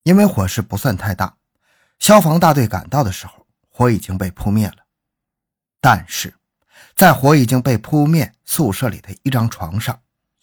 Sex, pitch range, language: male, 105-155 Hz, Chinese